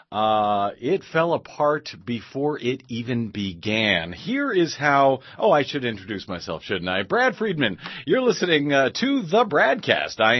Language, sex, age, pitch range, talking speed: English, male, 40-59, 110-170 Hz, 155 wpm